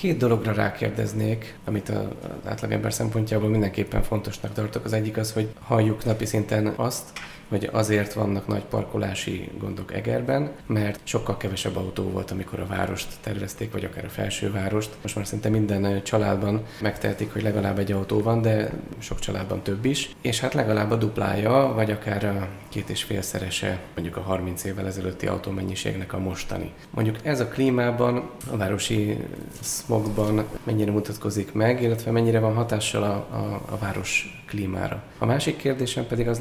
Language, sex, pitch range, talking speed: Hungarian, male, 100-115 Hz, 160 wpm